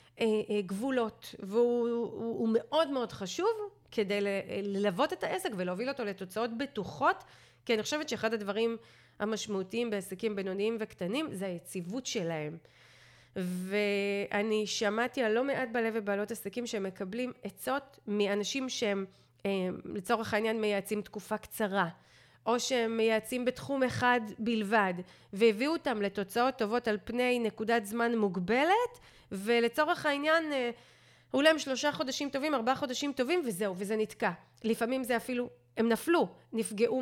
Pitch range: 205-260 Hz